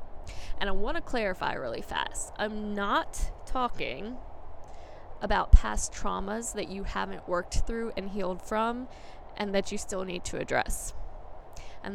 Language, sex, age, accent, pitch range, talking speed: English, female, 10-29, American, 185-215 Hz, 145 wpm